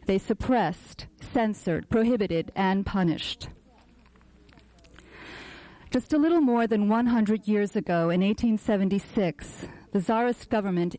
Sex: female